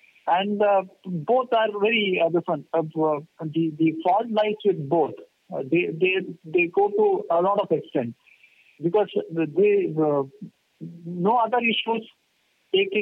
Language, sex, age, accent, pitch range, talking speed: English, male, 50-69, Indian, 155-210 Hz, 145 wpm